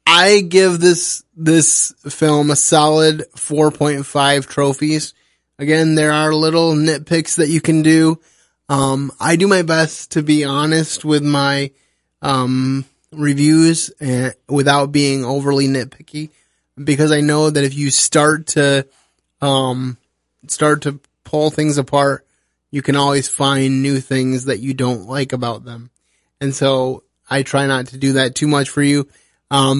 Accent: American